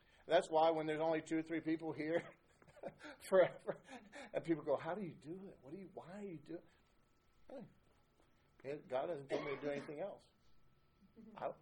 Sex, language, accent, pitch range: male, English, American, 135-180 Hz